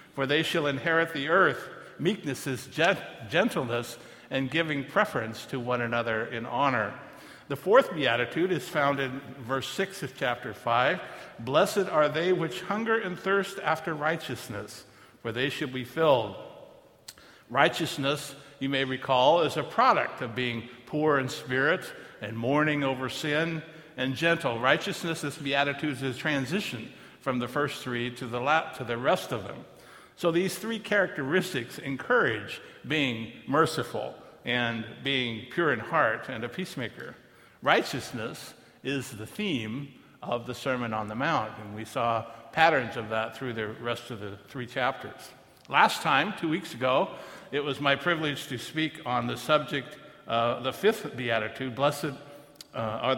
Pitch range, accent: 125-155 Hz, American